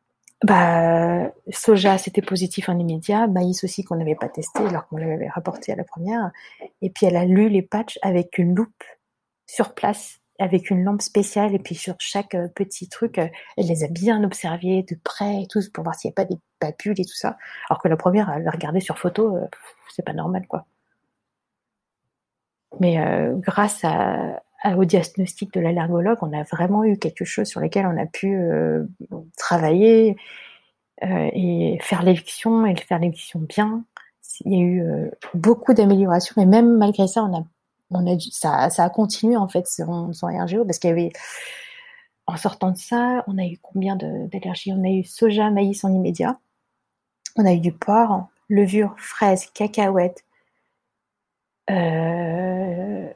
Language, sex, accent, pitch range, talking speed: French, female, French, 175-210 Hz, 170 wpm